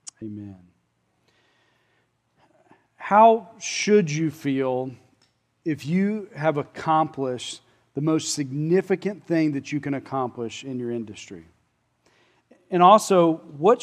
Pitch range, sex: 130-170 Hz, male